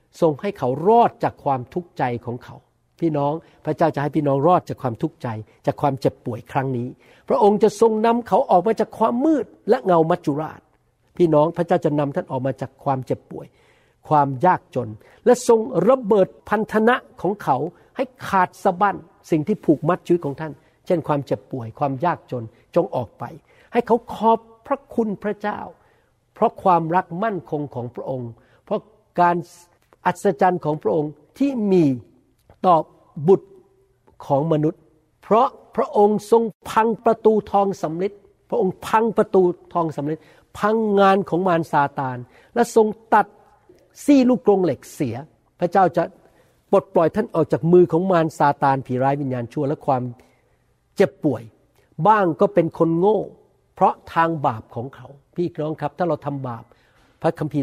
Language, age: Thai, 60-79